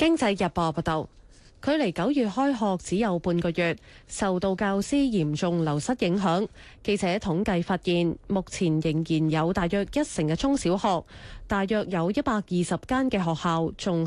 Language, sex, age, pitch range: Chinese, female, 30-49, 165-230 Hz